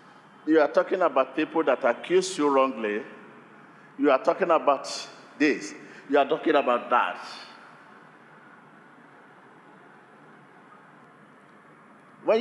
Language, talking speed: English, 95 wpm